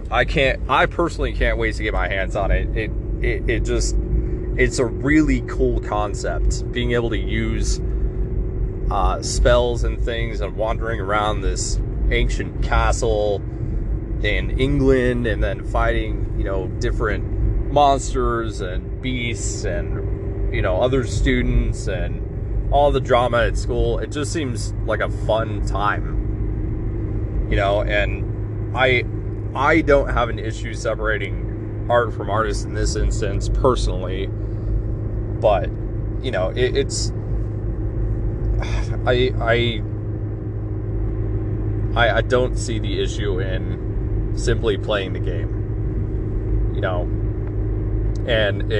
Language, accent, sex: English, American, male